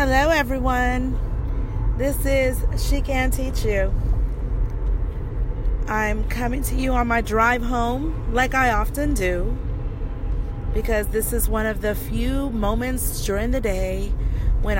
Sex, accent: female, American